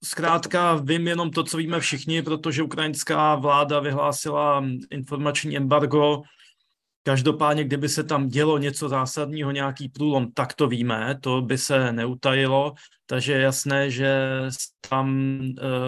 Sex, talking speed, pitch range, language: male, 130 wpm, 135-150 Hz, Slovak